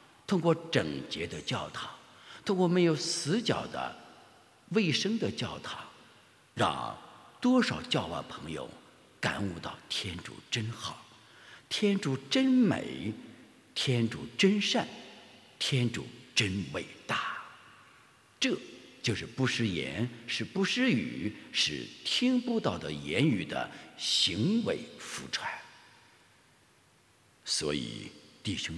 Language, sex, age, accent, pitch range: English, male, 60-79, Chinese, 120-195 Hz